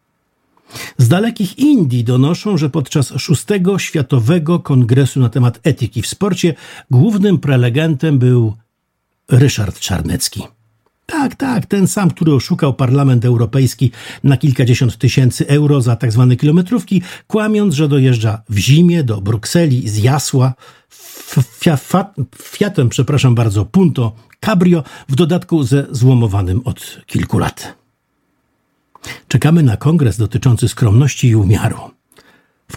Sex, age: male, 50-69